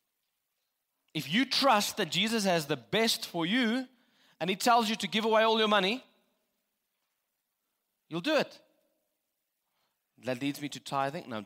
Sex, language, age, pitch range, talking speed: male, English, 30-49, 160-225 Hz, 155 wpm